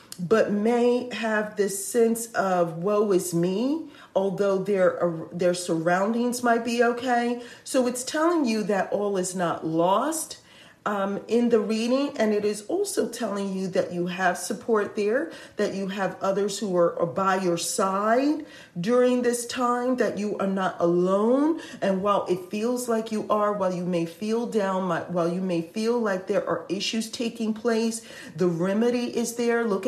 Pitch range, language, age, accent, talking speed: 180-230 Hz, English, 40-59, American, 175 wpm